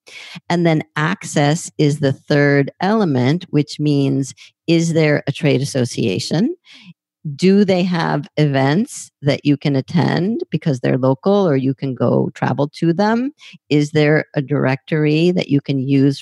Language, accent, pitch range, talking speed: English, American, 140-170 Hz, 150 wpm